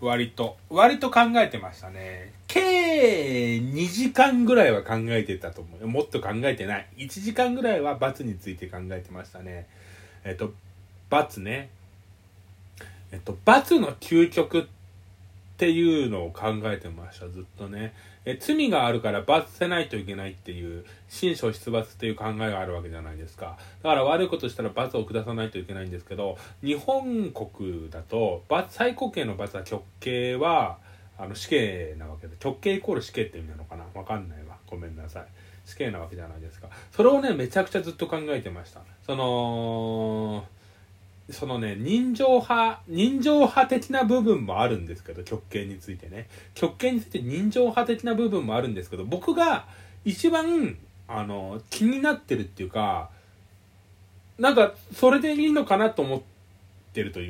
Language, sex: Japanese, male